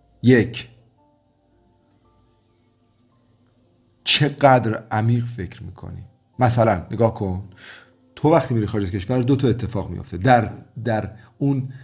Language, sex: Persian, male